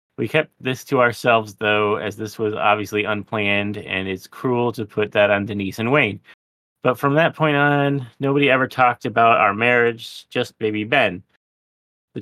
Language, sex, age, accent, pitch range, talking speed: English, male, 30-49, American, 105-120 Hz, 175 wpm